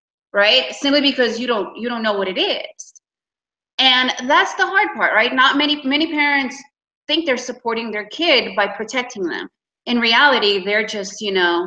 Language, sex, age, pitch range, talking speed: English, female, 30-49, 200-260 Hz, 180 wpm